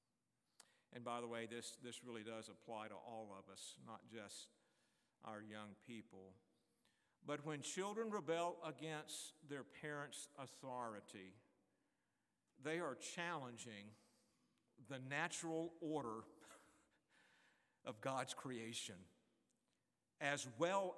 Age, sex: 50-69, male